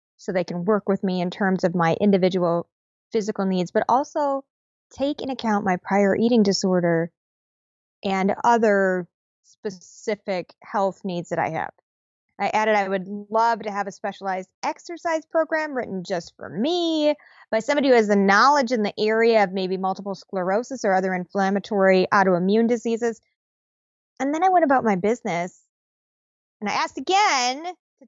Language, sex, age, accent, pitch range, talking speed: English, female, 20-39, American, 195-245 Hz, 160 wpm